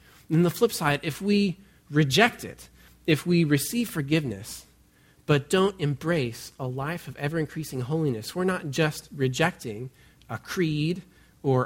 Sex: male